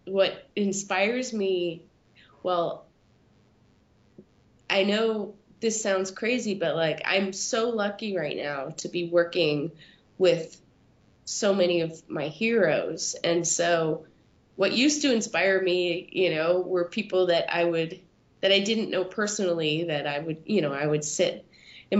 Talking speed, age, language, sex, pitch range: 145 wpm, 20-39, English, female, 160-190 Hz